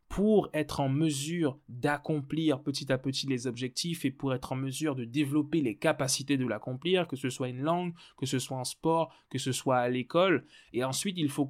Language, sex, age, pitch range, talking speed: French, male, 20-39, 130-170 Hz, 210 wpm